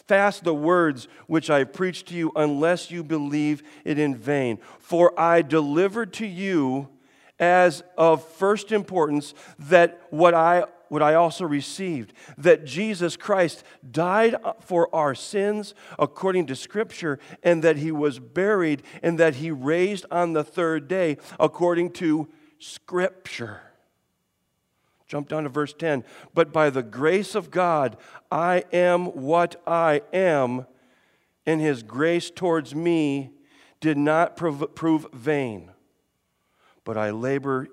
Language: English